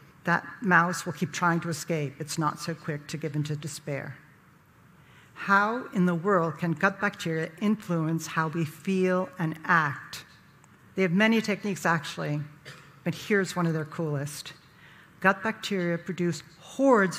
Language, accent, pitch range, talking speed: English, American, 155-190 Hz, 150 wpm